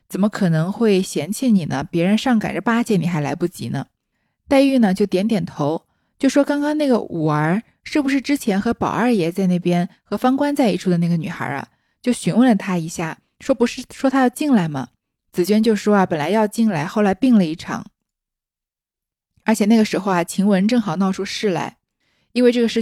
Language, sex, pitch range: Chinese, female, 180-235 Hz